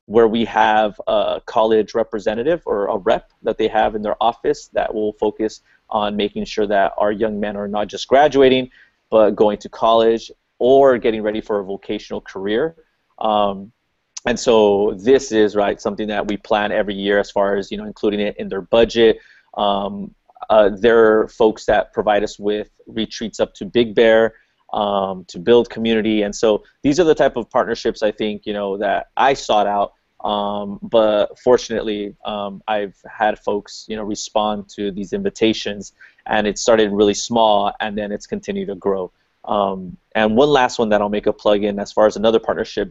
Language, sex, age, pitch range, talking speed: English, male, 30-49, 100-115 Hz, 190 wpm